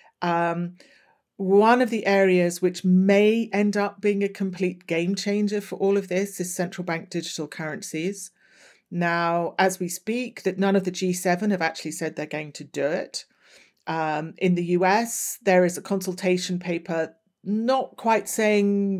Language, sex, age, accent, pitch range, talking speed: English, female, 40-59, British, 170-200 Hz, 165 wpm